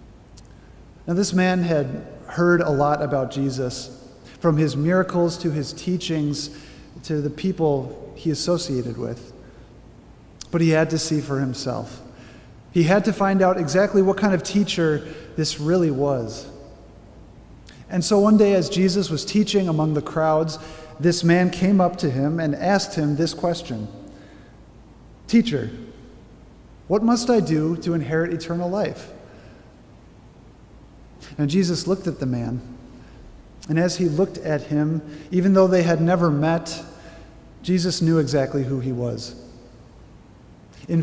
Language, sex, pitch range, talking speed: English, male, 135-180 Hz, 140 wpm